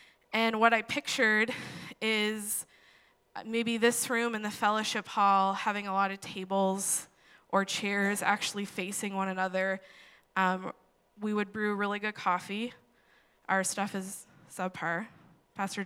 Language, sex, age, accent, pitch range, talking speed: English, female, 20-39, American, 195-230 Hz, 130 wpm